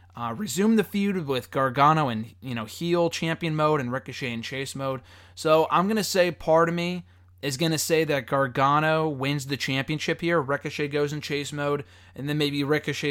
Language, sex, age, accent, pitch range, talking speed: English, male, 20-39, American, 120-155 Hz, 200 wpm